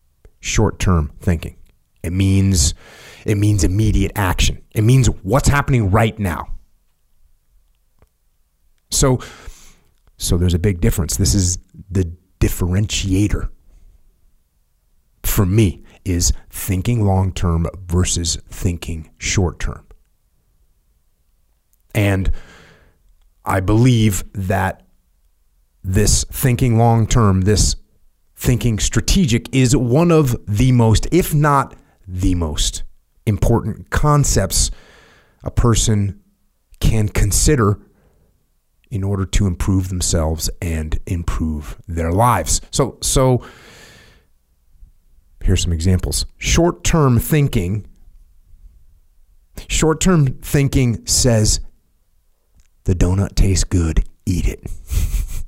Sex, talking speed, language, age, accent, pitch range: male, 90 wpm, English, 30-49, American, 80-110 Hz